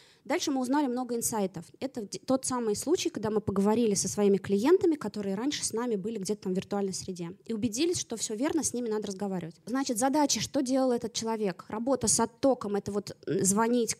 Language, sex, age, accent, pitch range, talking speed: Russian, female, 20-39, native, 205-255 Hz, 200 wpm